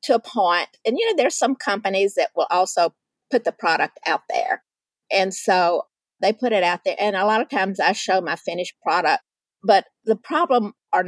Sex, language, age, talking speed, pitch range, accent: female, English, 50-69, 205 wpm, 170-205 Hz, American